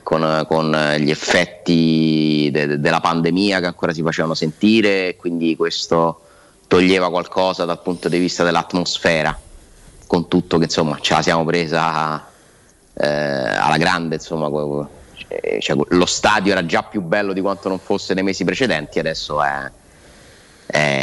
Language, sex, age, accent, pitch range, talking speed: Italian, male, 30-49, native, 80-90 Hz, 150 wpm